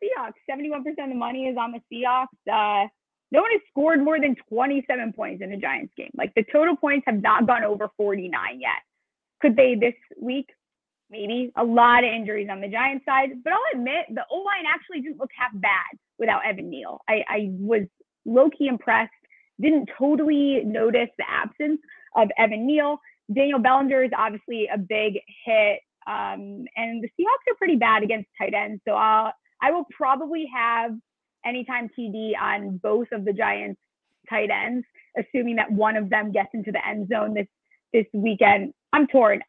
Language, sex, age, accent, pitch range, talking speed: English, female, 20-39, American, 215-275 Hz, 180 wpm